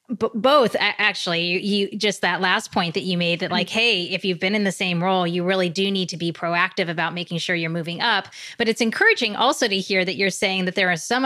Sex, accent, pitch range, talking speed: female, American, 175-215 Hz, 250 wpm